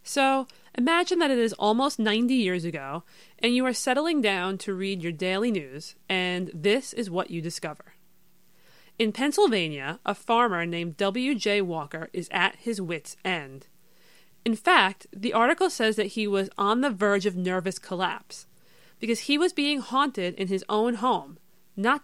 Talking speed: 165 wpm